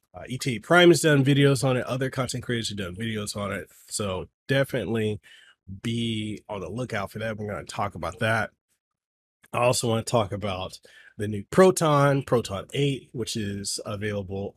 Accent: American